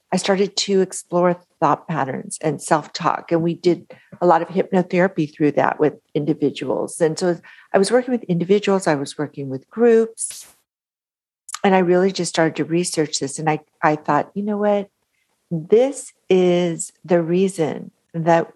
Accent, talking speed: American, 165 wpm